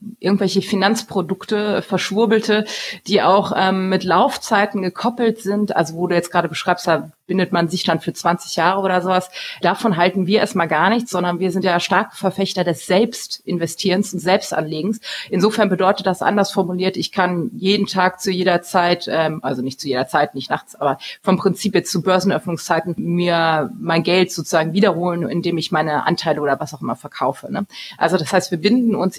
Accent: German